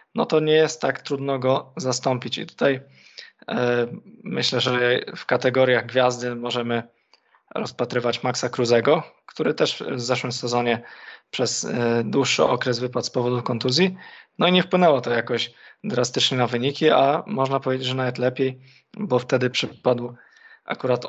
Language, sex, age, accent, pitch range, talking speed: Polish, male, 20-39, native, 125-140 Hz, 140 wpm